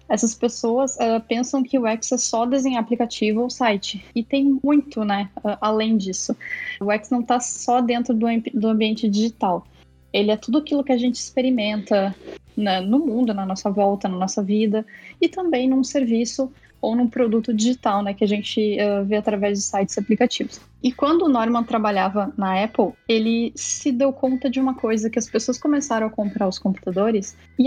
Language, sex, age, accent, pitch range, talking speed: Portuguese, female, 10-29, Brazilian, 215-260 Hz, 190 wpm